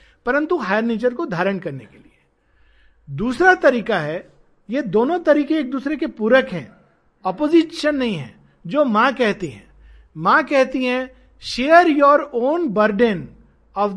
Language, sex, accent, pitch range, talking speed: Hindi, male, native, 190-270 Hz, 145 wpm